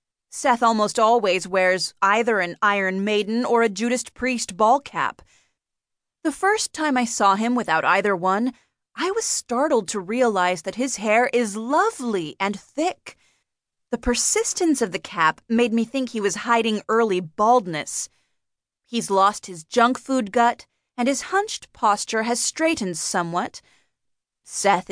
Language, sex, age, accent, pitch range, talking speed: English, female, 30-49, American, 190-250 Hz, 150 wpm